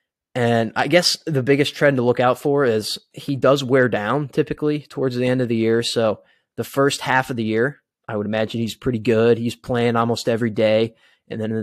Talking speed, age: 220 wpm, 20-39